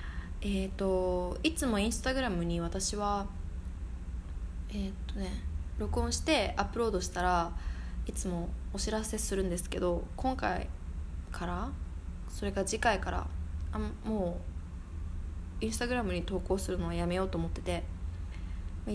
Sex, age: female, 20-39